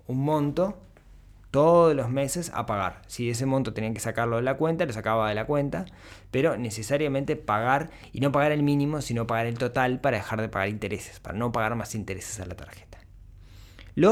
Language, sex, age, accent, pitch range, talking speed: Spanish, male, 20-39, Argentinian, 95-125 Hz, 200 wpm